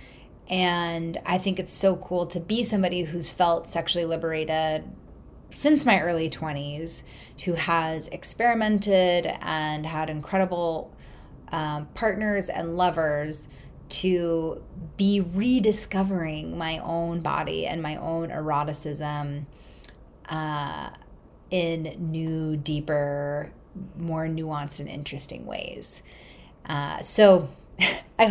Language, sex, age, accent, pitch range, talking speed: English, female, 20-39, American, 150-190 Hz, 105 wpm